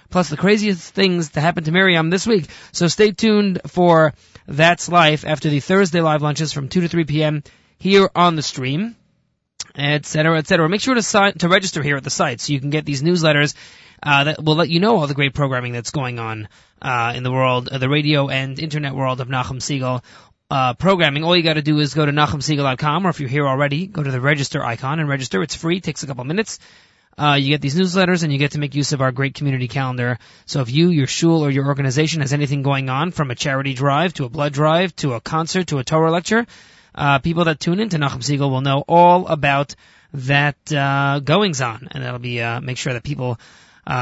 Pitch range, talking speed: 135-175 Hz, 235 wpm